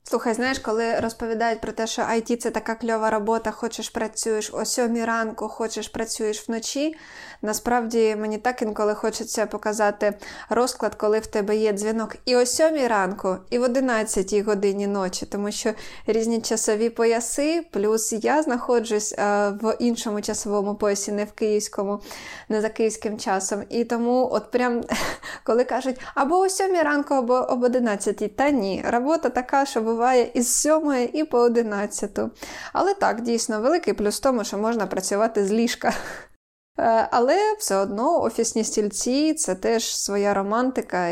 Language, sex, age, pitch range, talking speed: Ukrainian, female, 20-39, 210-250 Hz, 160 wpm